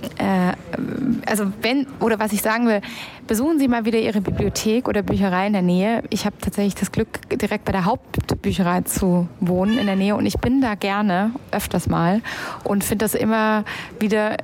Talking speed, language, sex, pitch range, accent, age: 185 wpm, German, female, 190-235 Hz, German, 20-39